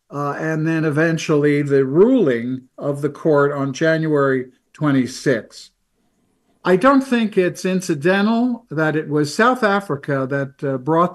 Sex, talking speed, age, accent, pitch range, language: male, 135 wpm, 50-69, American, 140-185 Hz, English